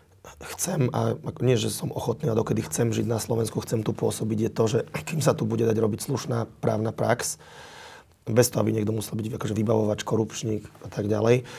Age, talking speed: 30-49, 200 wpm